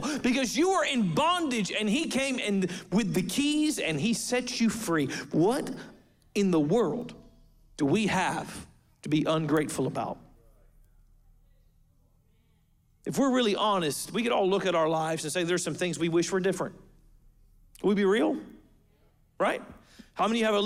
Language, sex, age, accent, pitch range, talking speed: English, male, 50-69, American, 155-210 Hz, 165 wpm